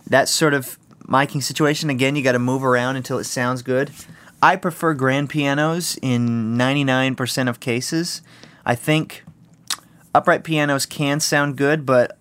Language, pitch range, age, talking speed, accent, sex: English, 120-145 Hz, 30-49, 145 wpm, American, male